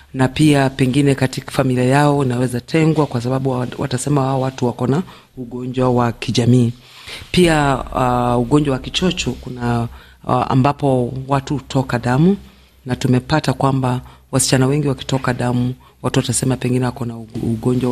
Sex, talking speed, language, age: female, 140 wpm, Swahili, 40-59